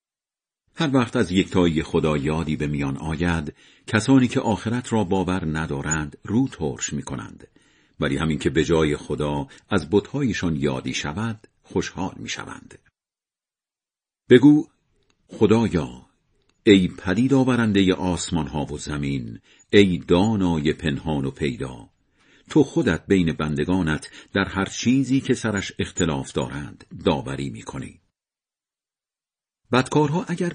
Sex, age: male, 50-69